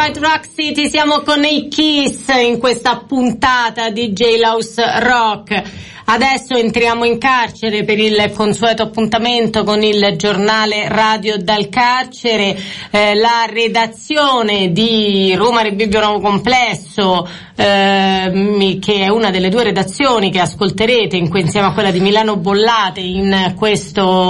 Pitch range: 195-235 Hz